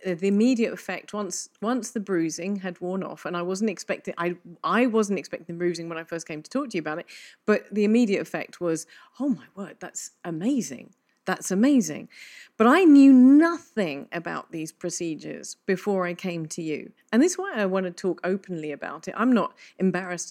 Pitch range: 180-245 Hz